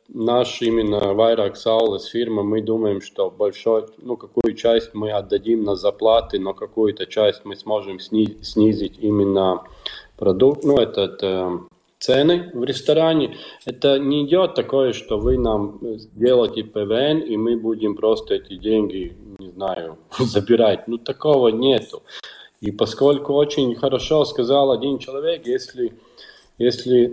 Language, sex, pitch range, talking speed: Russian, male, 110-145 Hz, 135 wpm